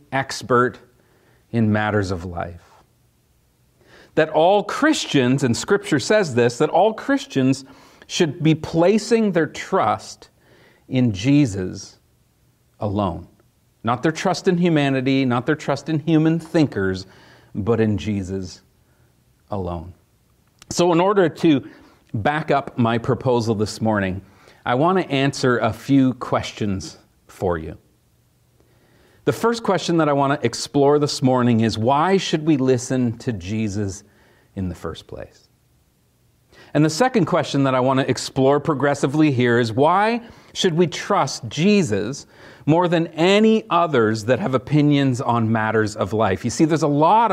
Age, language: 40-59, English